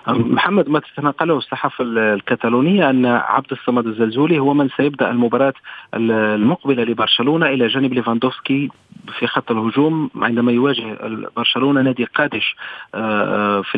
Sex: male